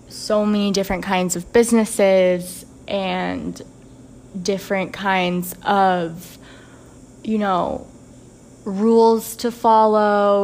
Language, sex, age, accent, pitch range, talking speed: English, female, 20-39, American, 185-225 Hz, 85 wpm